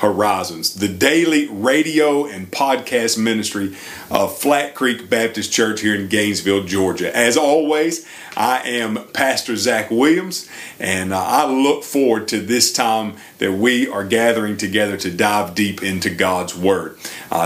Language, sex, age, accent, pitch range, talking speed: English, male, 40-59, American, 110-145 Hz, 150 wpm